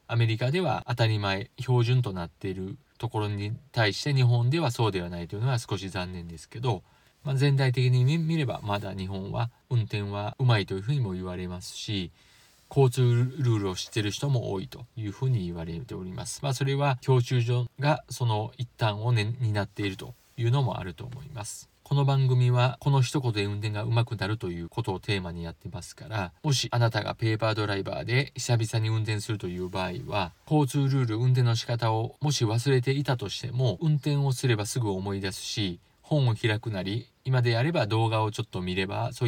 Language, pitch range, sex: Japanese, 100-130 Hz, male